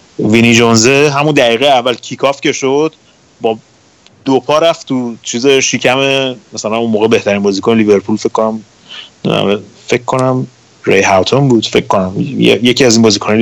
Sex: male